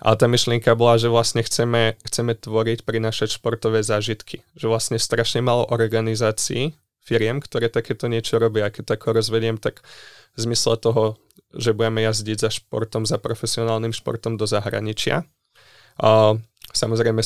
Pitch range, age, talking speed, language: 110-120 Hz, 20-39, 140 wpm, Czech